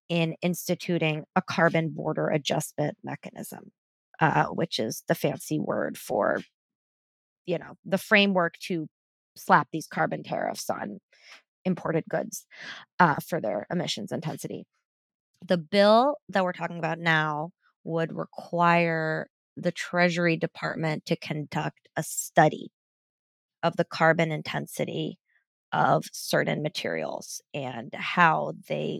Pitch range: 155-185 Hz